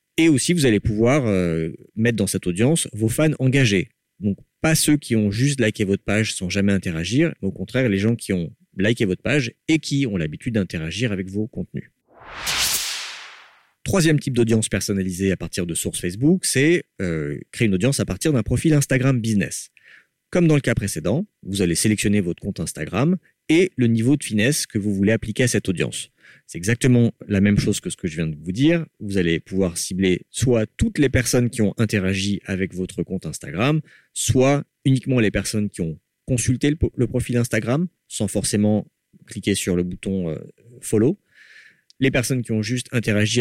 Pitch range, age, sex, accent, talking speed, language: 95-130 Hz, 40-59, male, French, 190 wpm, French